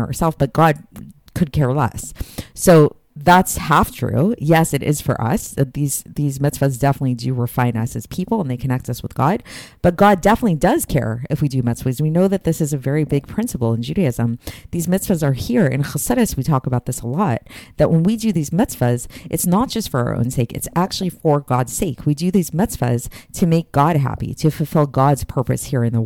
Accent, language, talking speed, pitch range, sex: American, English, 220 wpm, 130-175 Hz, female